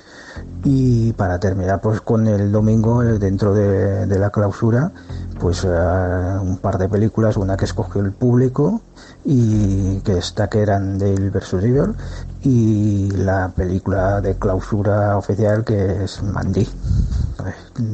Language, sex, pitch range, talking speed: Spanish, male, 95-115 Hz, 130 wpm